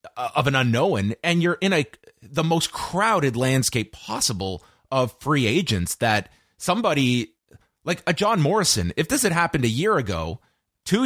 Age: 30-49